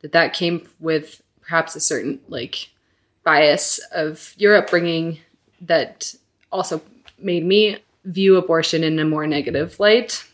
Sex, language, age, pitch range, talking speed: female, English, 20-39, 155-180 Hz, 135 wpm